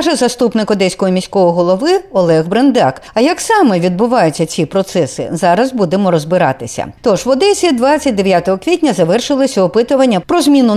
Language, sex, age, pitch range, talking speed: Ukrainian, female, 50-69, 175-265 Hz, 140 wpm